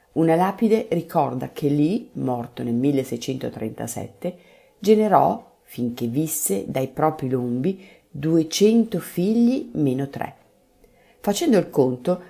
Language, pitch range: Italian, 130-185 Hz